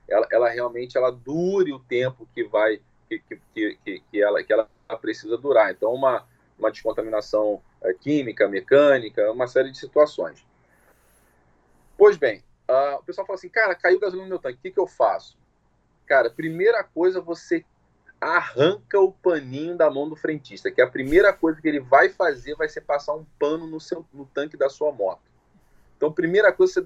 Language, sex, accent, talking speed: Portuguese, male, Brazilian, 185 wpm